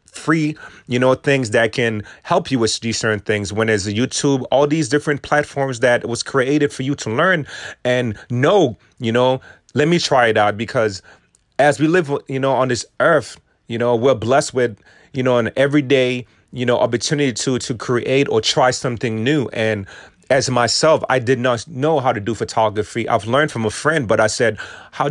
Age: 30-49